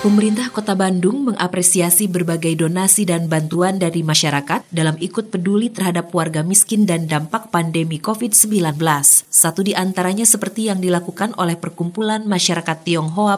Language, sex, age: Indonesian, female, 30-49